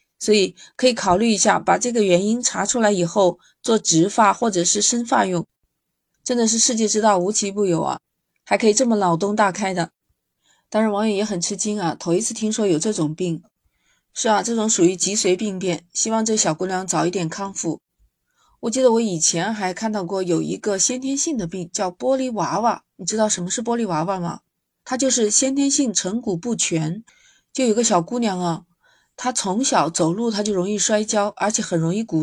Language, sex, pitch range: Chinese, female, 180-235 Hz